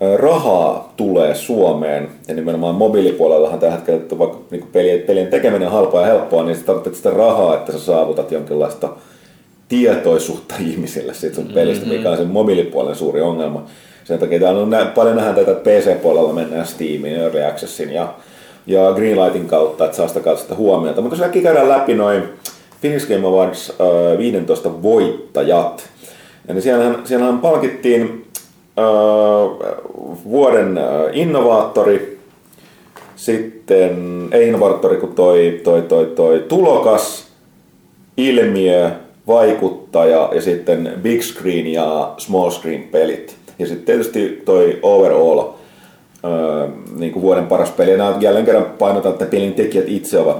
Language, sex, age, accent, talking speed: Finnish, male, 30-49, native, 135 wpm